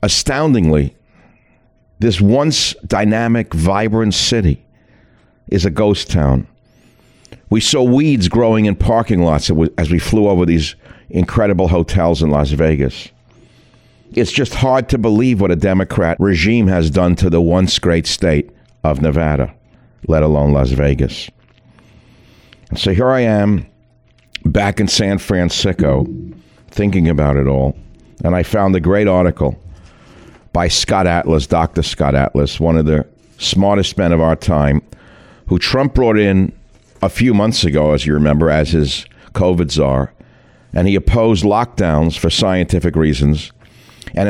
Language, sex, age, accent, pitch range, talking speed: English, male, 60-79, American, 80-110 Hz, 140 wpm